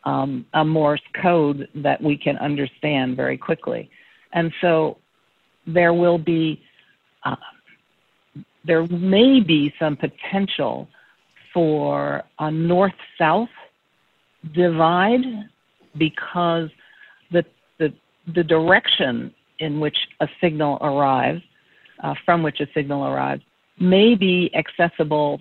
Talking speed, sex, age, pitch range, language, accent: 105 wpm, female, 50-69, 140-165 Hz, English, American